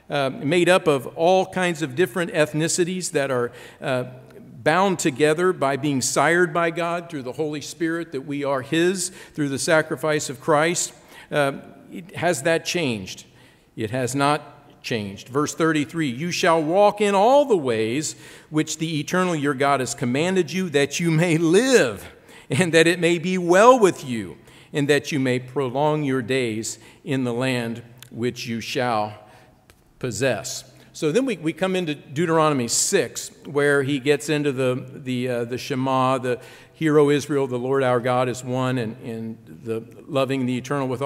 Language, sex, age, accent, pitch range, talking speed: English, male, 50-69, American, 125-165 Hz, 170 wpm